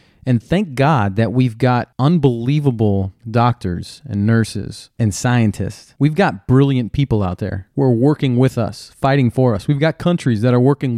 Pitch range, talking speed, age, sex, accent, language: 105-130 Hz, 170 wpm, 30-49, male, American, English